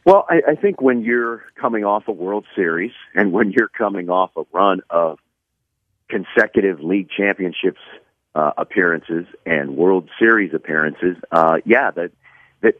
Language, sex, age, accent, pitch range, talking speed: English, male, 50-69, American, 90-120 Hz, 150 wpm